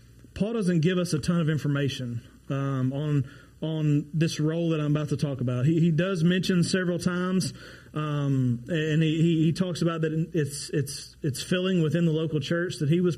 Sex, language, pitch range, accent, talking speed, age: male, English, 135-175 Hz, American, 195 wpm, 30-49